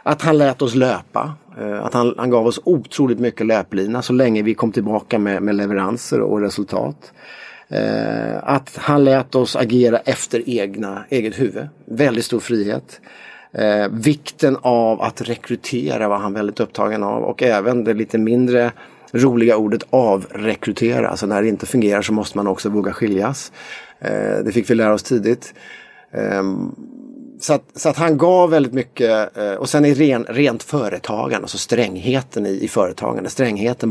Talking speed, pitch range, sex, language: 160 wpm, 105-135 Hz, male, English